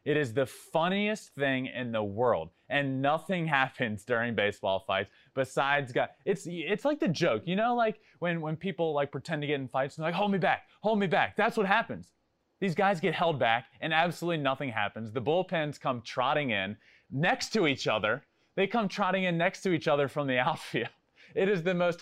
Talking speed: 215 wpm